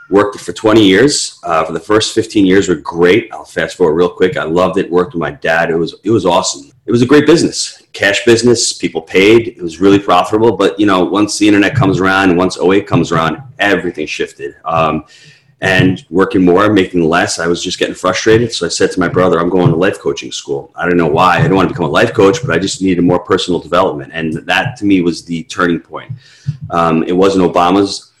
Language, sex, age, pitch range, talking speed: English, male, 30-49, 90-110 Hz, 235 wpm